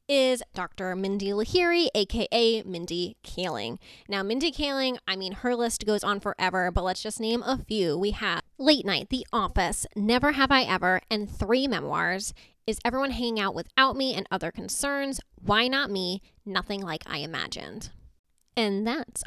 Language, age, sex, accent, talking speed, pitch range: English, 10-29, female, American, 170 wpm, 195-245 Hz